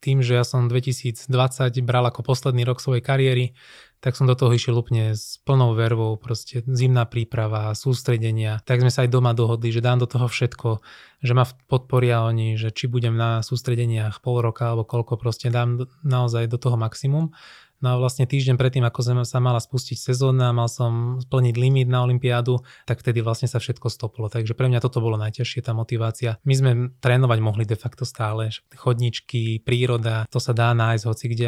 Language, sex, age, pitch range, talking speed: Slovak, male, 20-39, 115-125 Hz, 190 wpm